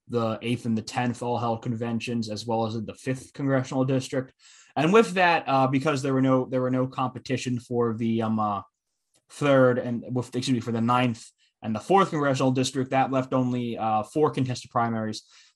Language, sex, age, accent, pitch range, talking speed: English, male, 20-39, American, 110-130 Hz, 200 wpm